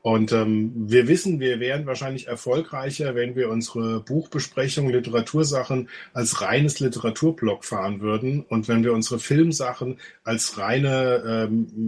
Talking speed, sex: 130 wpm, male